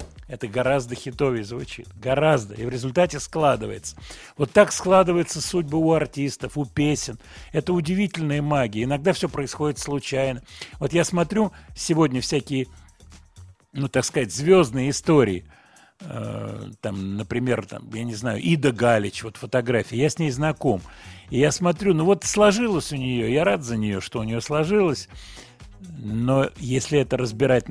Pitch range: 110-155 Hz